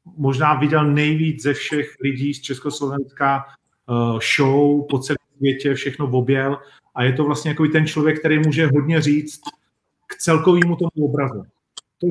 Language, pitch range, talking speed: Czech, 130-155 Hz, 155 wpm